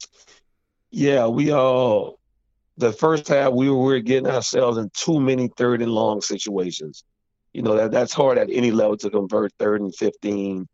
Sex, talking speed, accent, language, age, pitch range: male, 180 wpm, American, English, 40-59, 110-130 Hz